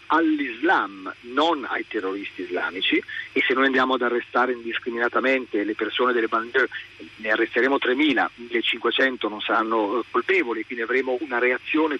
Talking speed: 135 wpm